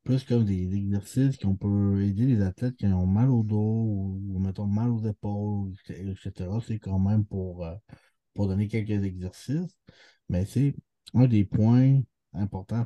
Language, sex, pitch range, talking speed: French, male, 100-120 Hz, 160 wpm